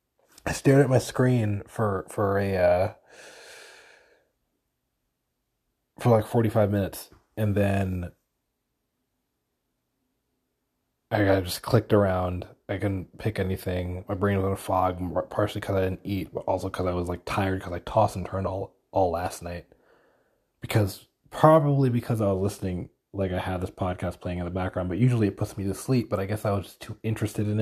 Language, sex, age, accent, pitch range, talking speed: English, male, 20-39, American, 90-110 Hz, 175 wpm